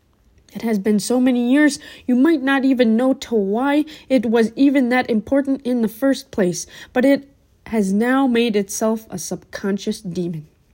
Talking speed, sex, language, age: 175 wpm, female, English, 20-39